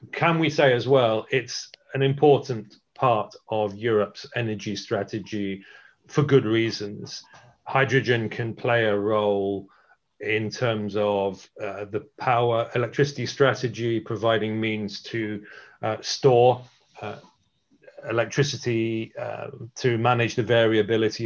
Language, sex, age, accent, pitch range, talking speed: English, male, 40-59, British, 110-130 Hz, 115 wpm